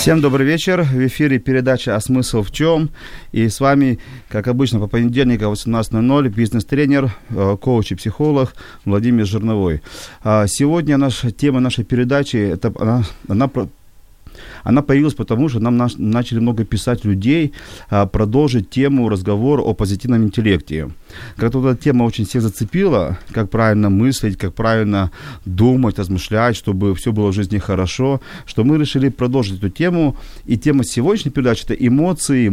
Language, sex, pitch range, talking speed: Ukrainian, male, 105-130 Hz, 140 wpm